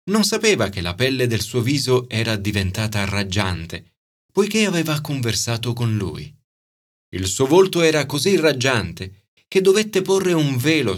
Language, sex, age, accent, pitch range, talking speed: Italian, male, 30-49, native, 105-145 Hz, 150 wpm